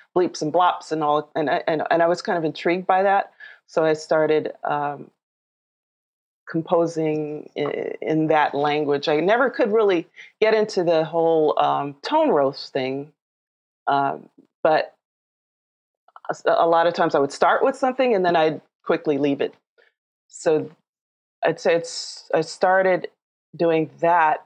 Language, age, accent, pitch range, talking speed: English, 30-49, American, 140-170 Hz, 150 wpm